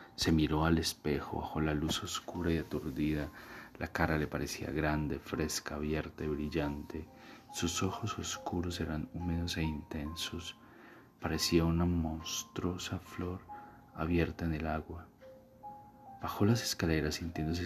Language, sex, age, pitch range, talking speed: Spanish, male, 30-49, 80-90 Hz, 130 wpm